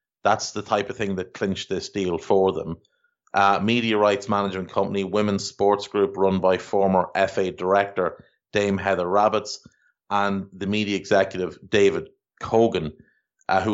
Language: English